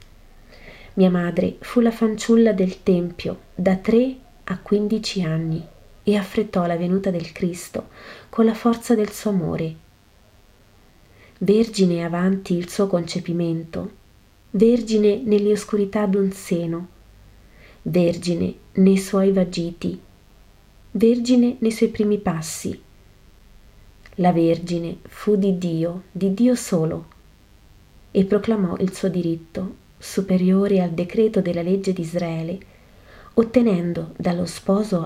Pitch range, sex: 165-205 Hz, female